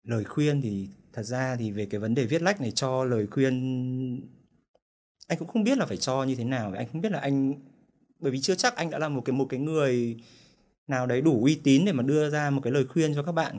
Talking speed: 260 wpm